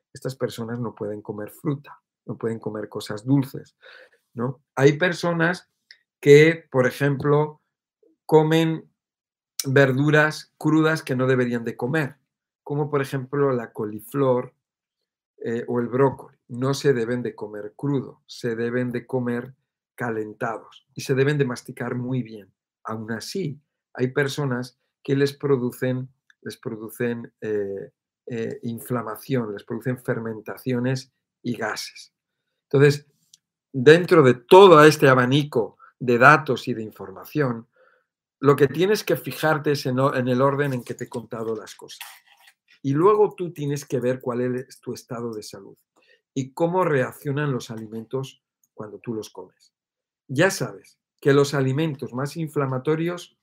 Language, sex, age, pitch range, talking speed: Spanish, male, 50-69, 120-150 Hz, 135 wpm